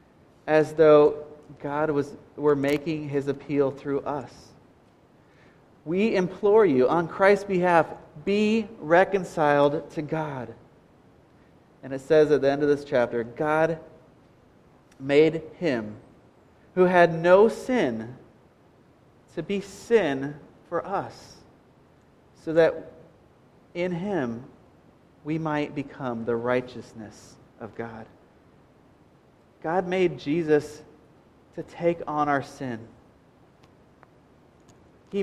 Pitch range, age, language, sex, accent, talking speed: 140-175 Hz, 30-49, English, male, American, 105 wpm